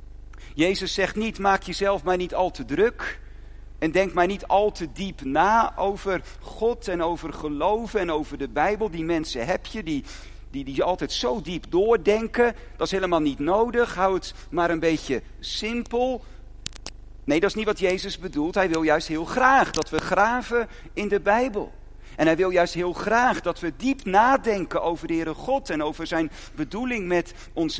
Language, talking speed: Dutch, 190 wpm